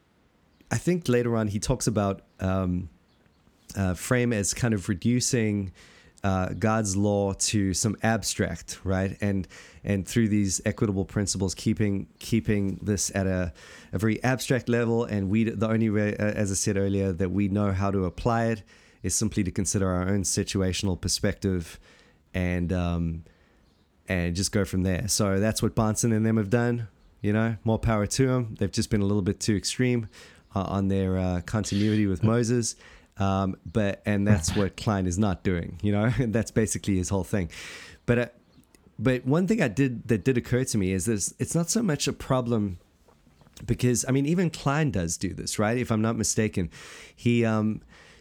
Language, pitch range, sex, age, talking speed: English, 95-115 Hz, male, 20-39, 185 wpm